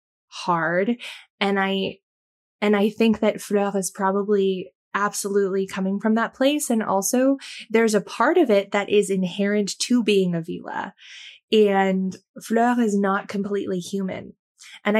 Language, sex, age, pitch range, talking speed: English, female, 20-39, 190-220 Hz, 145 wpm